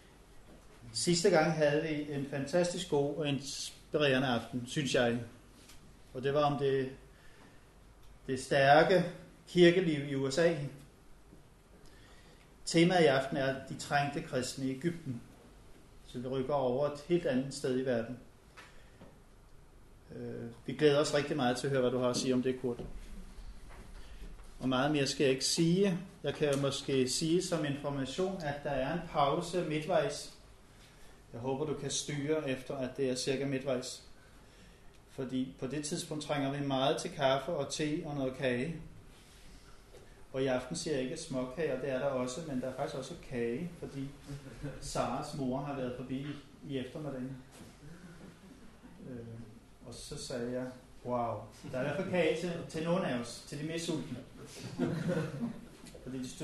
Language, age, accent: Danish, 30-49, native